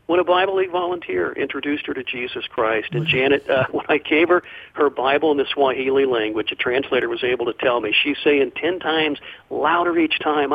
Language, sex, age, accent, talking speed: English, male, 50-69, American, 210 wpm